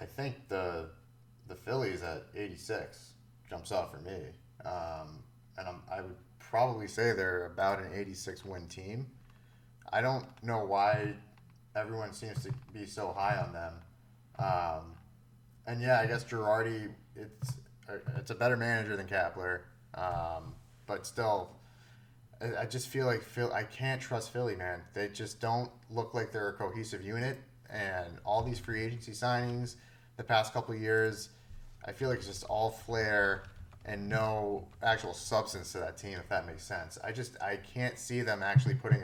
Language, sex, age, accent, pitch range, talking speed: English, male, 30-49, American, 105-120 Hz, 165 wpm